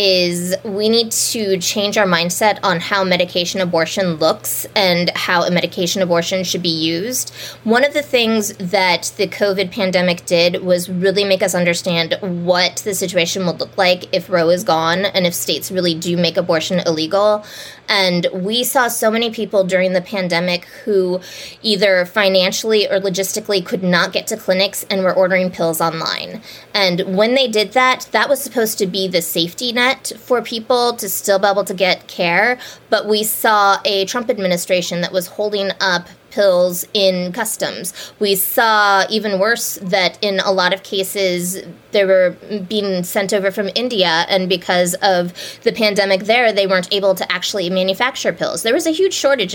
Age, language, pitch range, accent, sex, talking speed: 20-39, English, 180-210 Hz, American, female, 175 wpm